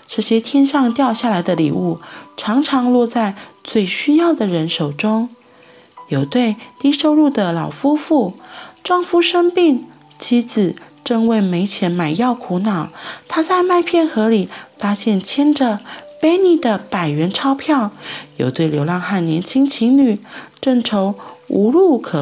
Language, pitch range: Chinese, 195-295 Hz